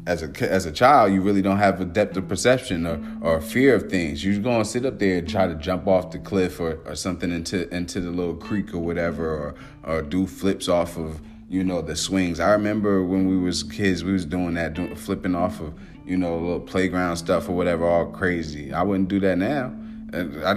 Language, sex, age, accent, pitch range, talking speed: English, male, 30-49, American, 85-100 Hz, 235 wpm